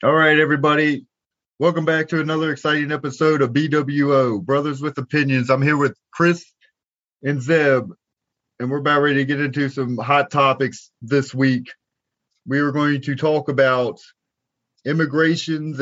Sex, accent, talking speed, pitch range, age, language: male, American, 150 wpm, 125-145 Hz, 30-49, English